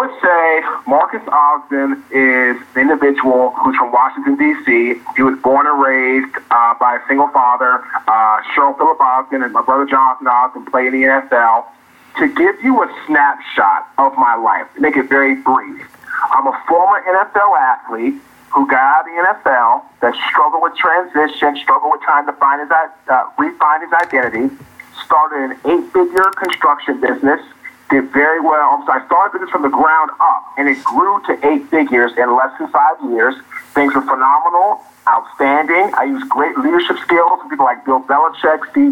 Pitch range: 130-170 Hz